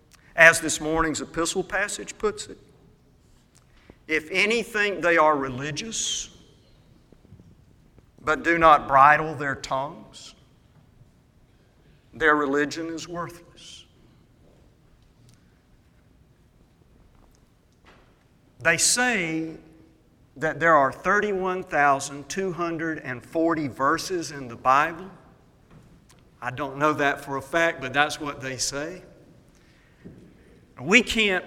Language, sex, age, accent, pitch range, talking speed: English, male, 50-69, American, 145-180 Hz, 90 wpm